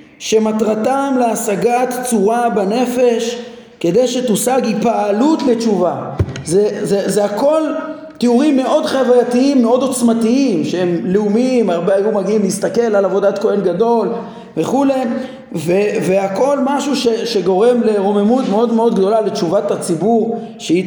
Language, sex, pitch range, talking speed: Hebrew, male, 190-245 Hz, 115 wpm